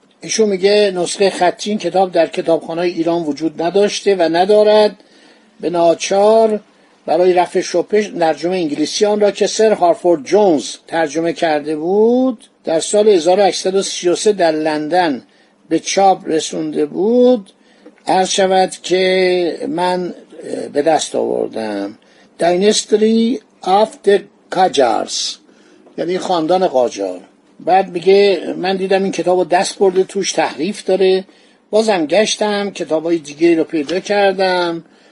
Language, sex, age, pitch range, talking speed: Persian, male, 60-79, 165-205 Hz, 120 wpm